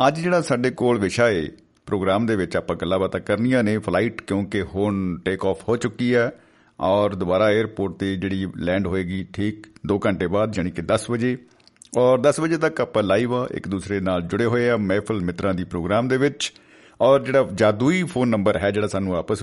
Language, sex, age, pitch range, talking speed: Punjabi, male, 50-69, 100-120 Hz, 190 wpm